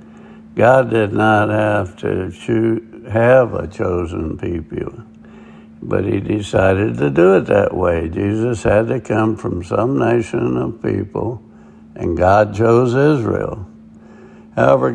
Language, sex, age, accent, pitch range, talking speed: English, male, 60-79, American, 85-125 Hz, 125 wpm